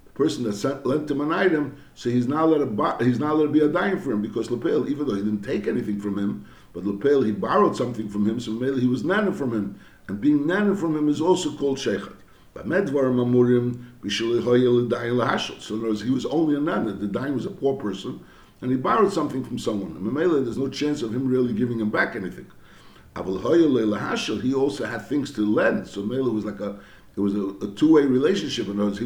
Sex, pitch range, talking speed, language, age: male, 110-145 Hz, 225 wpm, English, 60-79